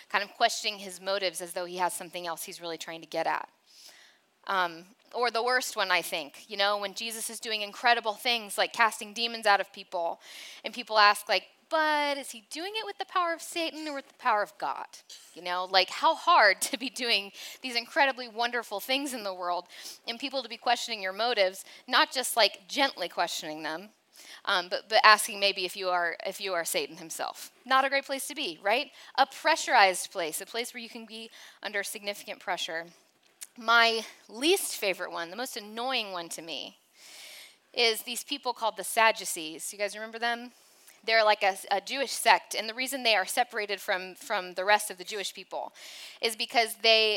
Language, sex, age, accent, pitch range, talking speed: English, female, 20-39, American, 190-250 Hz, 205 wpm